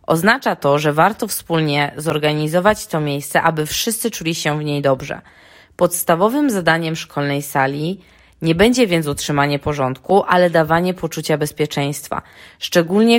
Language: Polish